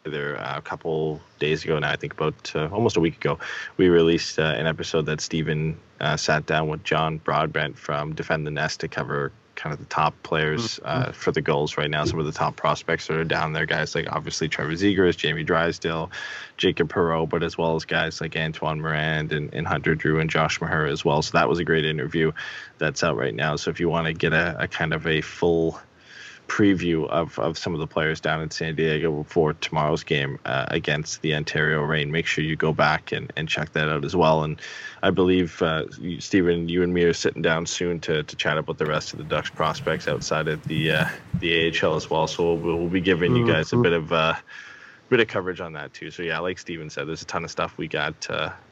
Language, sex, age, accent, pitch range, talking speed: English, male, 20-39, American, 80-85 Hz, 235 wpm